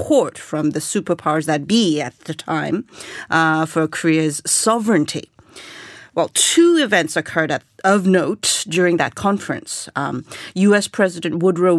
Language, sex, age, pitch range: Korean, female, 40-59, 165-215 Hz